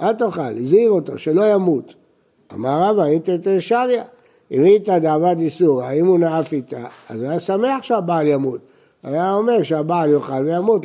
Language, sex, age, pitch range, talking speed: Hebrew, male, 60-79, 150-210 Hz, 165 wpm